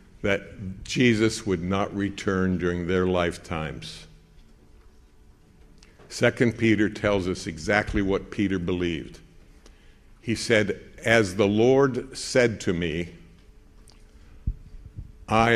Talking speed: 95 wpm